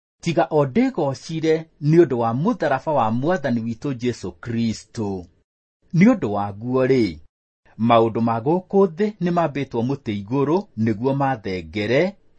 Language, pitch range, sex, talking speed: English, 110-160 Hz, male, 110 wpm